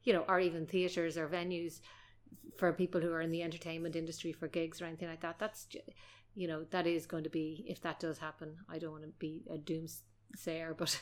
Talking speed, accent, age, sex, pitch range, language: 225 wpm, Irish, 30-49, female, 160-180 Hz, English